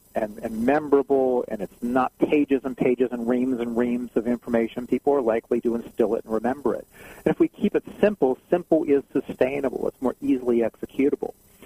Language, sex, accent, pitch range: English, male, American, 120-140 Hz